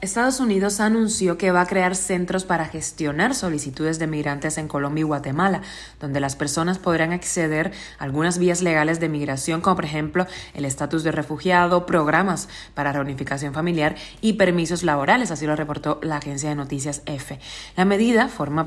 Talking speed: 170 wpm